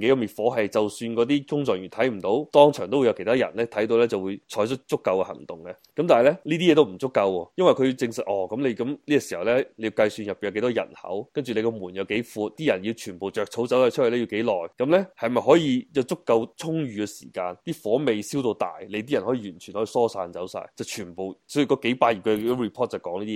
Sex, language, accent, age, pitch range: male, Chinese, native, 20-39, 105-130 Hz